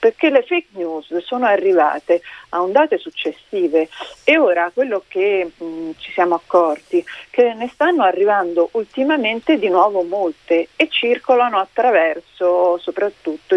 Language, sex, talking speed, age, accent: Italian, female, 135 wpm, 40-59, native